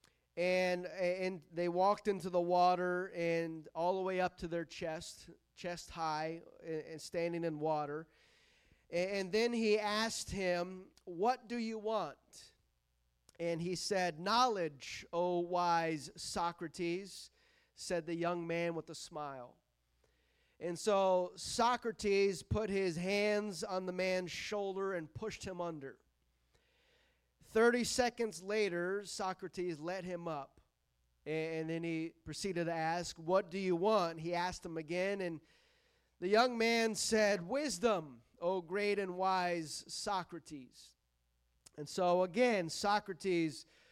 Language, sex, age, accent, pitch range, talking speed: English, male, 30-49, American, 165-200 Hz, 130 wpm